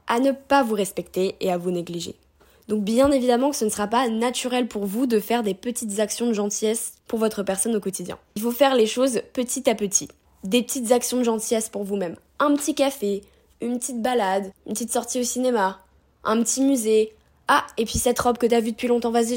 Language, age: French, 10-29